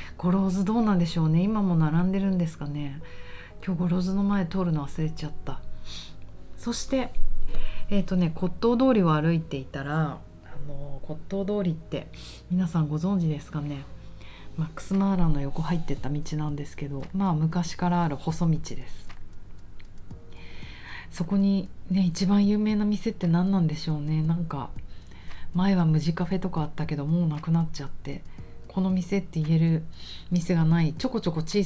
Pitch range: 150-190 Hz